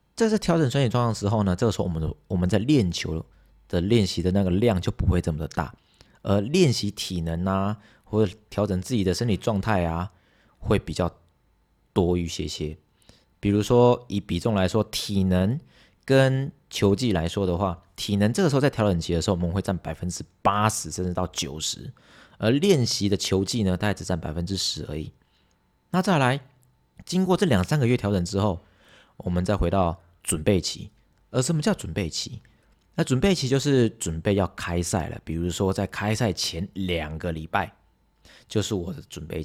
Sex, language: male, Chinese